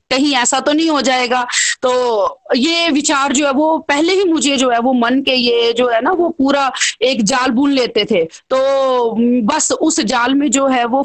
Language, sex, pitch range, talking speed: Hindi, female, 250-325 Hz, 210 wpm